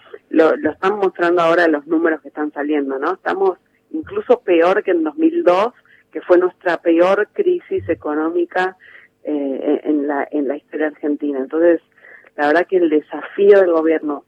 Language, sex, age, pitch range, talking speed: Spanish, female, 40-59, 150-195 Hz, 160 wpm